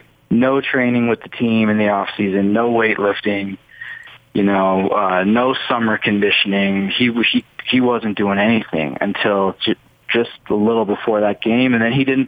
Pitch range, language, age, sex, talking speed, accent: 105-120 Hz, English, 20-39, male, 170 wpm, American